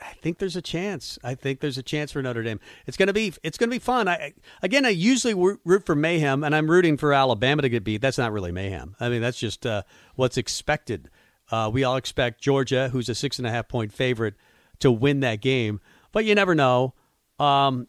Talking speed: 235 wpm